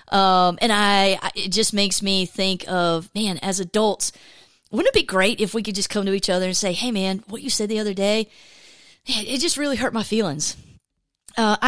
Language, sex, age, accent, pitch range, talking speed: English, female, 30-49, American, 195-260 Hz, 215 wpm